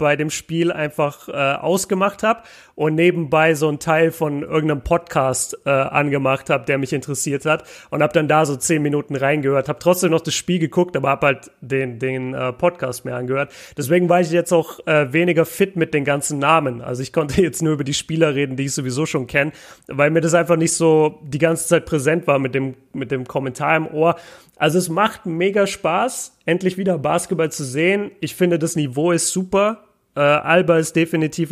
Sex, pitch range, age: male, 145-170 Hz, 30-49